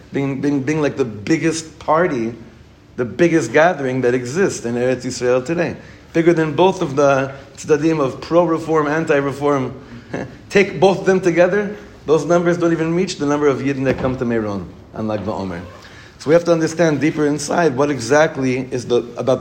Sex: male